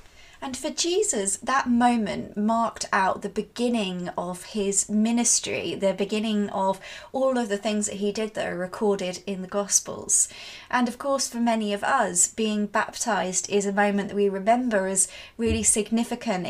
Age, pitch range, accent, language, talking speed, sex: 20-39, 195-235 Hz, British, English, 165 wpm, female